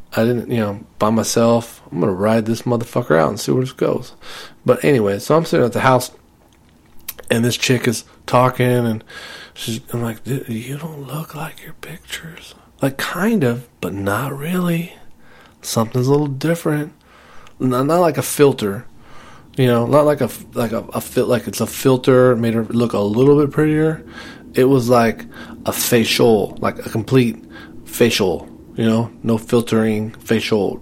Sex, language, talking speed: male, English, 175 wpm